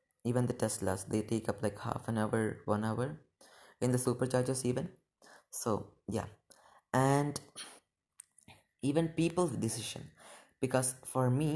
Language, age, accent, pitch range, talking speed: English, 20-39, Indian, 115-145 Hz, 130 wpm